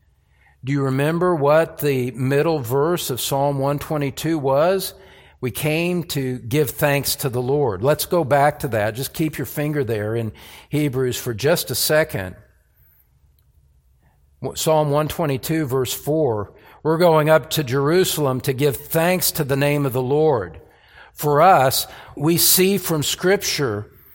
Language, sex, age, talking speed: English, male, 50-69, 145 wpm